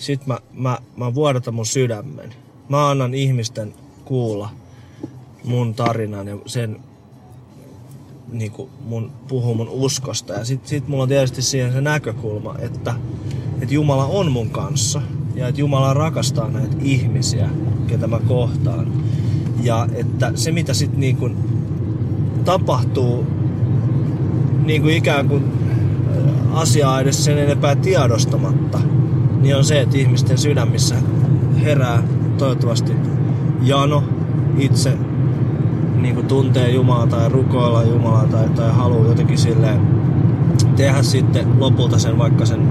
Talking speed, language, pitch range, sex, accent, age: 120 wpm, Finnish, 120-140 Hz, male, native, 20-39